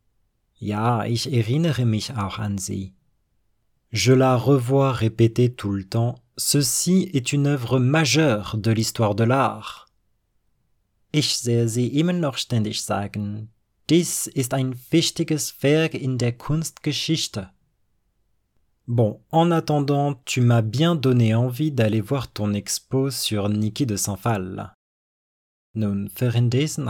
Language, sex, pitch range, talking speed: French, male, 105-135 Hz, 125 wpm